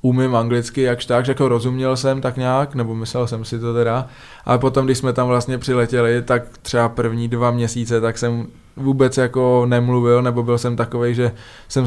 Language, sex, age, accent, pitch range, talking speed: Czech, male, 20-39, native, 120-125 Hz, 195 wpm